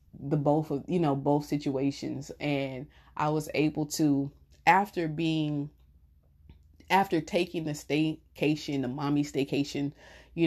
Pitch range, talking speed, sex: 135-160 Hz, 125 wpm, female